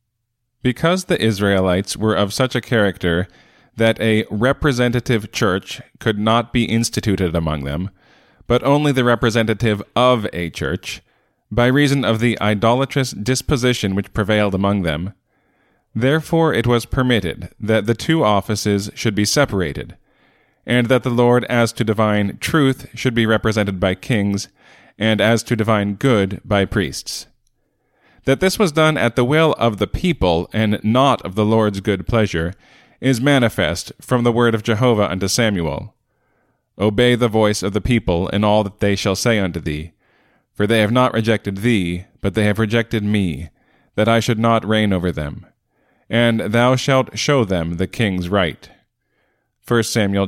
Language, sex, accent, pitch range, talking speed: English, male, American, 100-120 Hz, 160 wpm